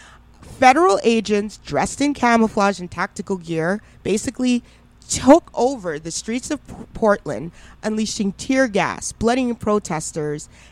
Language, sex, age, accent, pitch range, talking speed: English, female, 30-49, American, 175-235 Hz, 110 wpm